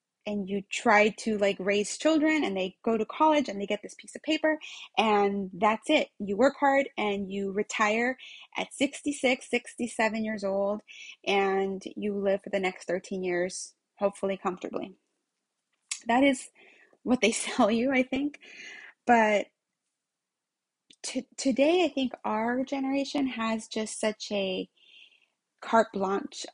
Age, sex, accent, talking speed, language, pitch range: 20-39, female, American, 145 wpm, English, 200-275 Hz